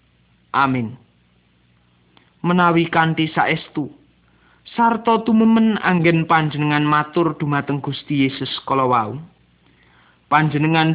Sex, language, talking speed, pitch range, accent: male, English, 75 wpm, 140-180 Hz, Indonesian